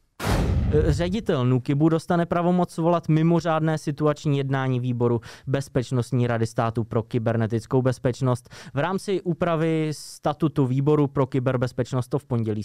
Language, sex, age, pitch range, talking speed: Czech, male, 20-39, 115-150 Hz, 120 wpm